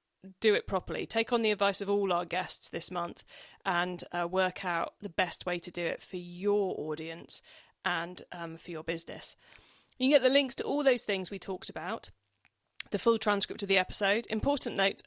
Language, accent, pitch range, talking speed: English, British, 185-265 Hz, 200 wpm